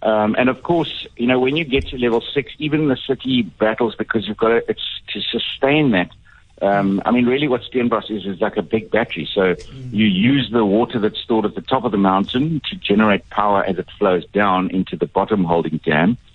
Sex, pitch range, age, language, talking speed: male, 90-115 Hz, 60-79, English, 225 wpm